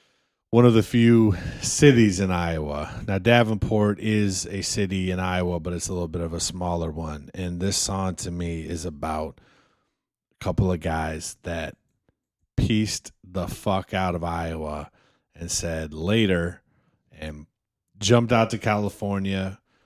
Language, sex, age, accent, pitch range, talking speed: English, male, 30-49, American, 90-110 Hz, 150 wpm